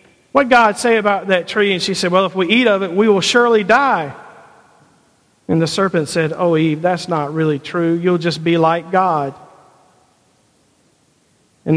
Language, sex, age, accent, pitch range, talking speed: English, male, 50-69, American, 160-190 Hz, 185 wpm